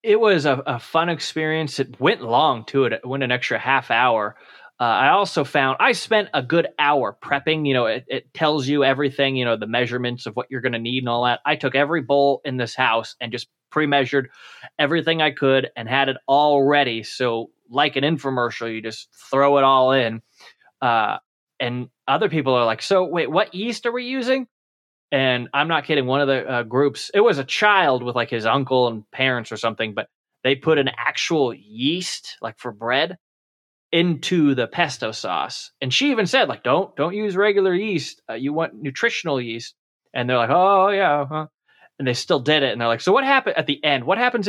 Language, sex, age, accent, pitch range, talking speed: English, male, 20-39, American, 125-160 Hz, 215 wpm